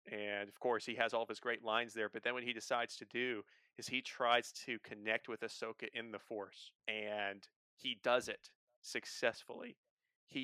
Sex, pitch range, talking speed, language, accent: male, 110-125 Hz, 195 wpm, English, American